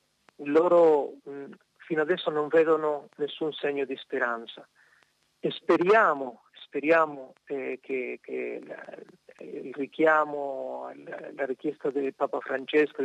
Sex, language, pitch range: male, Italian, 135-155 Hz